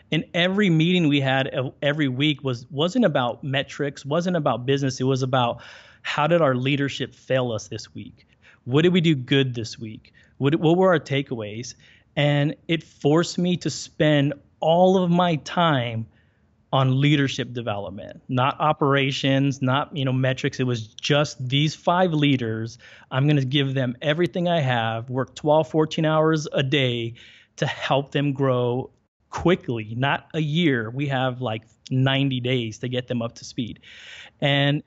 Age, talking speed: 30-49, 165 wpm